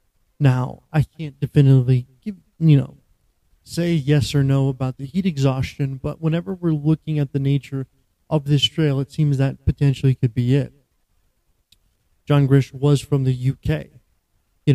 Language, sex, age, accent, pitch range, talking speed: English, male, 30-49, American, 130-150 Hz, 160 wpm